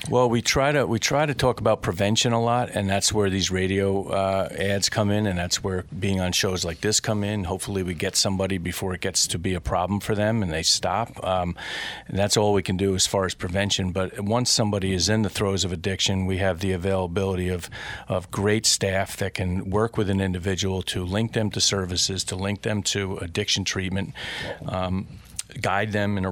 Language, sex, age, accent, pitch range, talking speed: English, male, 40-59, American, 95-110 Hz, 220 wpm